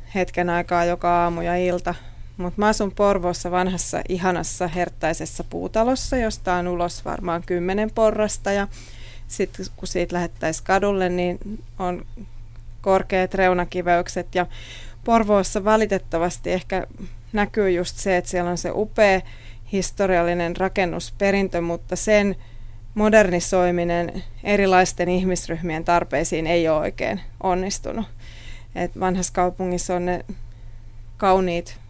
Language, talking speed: Finnish, 110 wpm